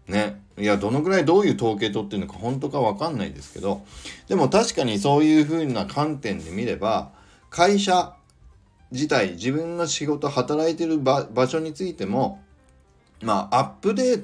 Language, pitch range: Japanese, 100-150 Hz